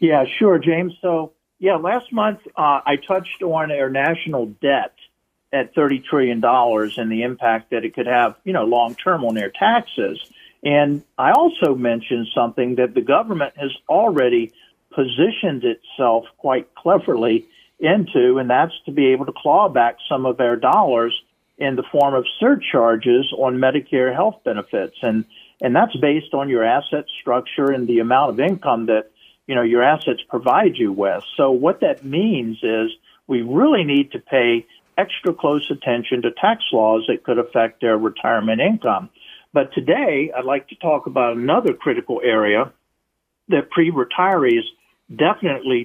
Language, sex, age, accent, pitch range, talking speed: English, male, 50-69, American, 120-170 Hz, 160 wpm